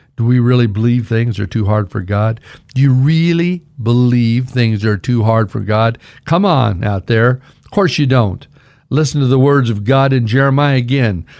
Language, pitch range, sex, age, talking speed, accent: English, 125-150 Hz, male, 60-79, 195 wpm, American